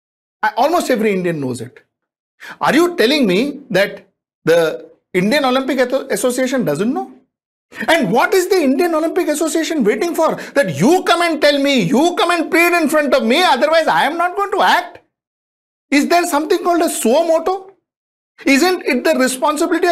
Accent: Indian